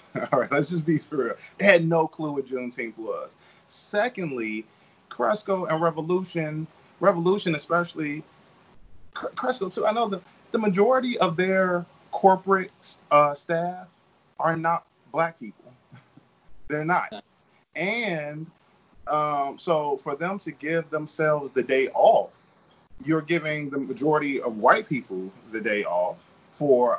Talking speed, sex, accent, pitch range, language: 135 wpm, male, American, 145-185 Hz, English